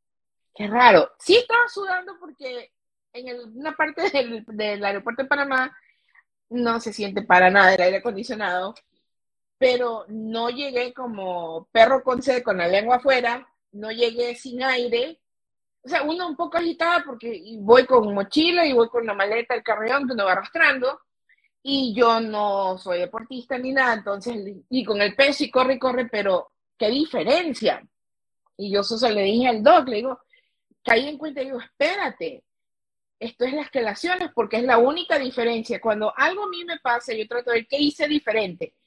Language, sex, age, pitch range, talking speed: Spanish, female, 30-49, 210-265 Hz, 180 wpm